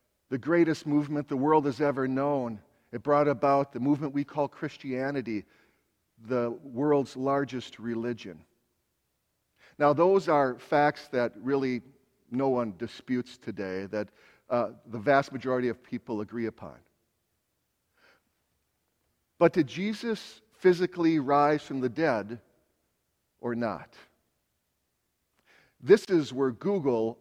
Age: 50-69